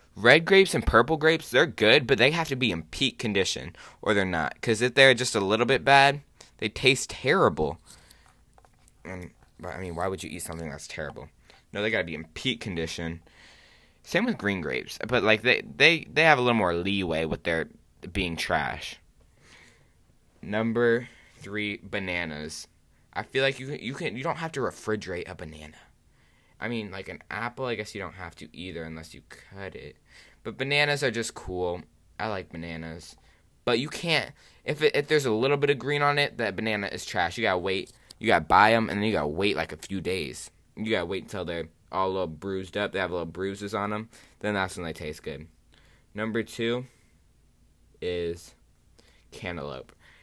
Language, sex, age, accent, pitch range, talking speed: English, male, 20-39, American, 85-125 Hz, 200 wpm